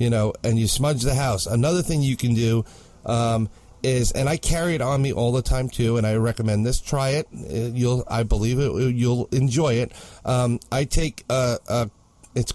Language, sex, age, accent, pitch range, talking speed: English, male, 40-59, American, 115-140 Hz, 205 wpm